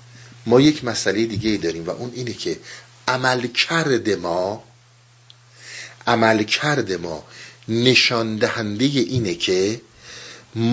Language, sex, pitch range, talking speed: Persian, male, 115-140 Hz, 95 wpm